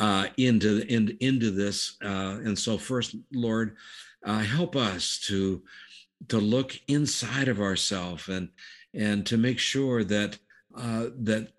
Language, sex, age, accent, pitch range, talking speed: English, male, 60-79, American, 100-115 Hz, 140 wpm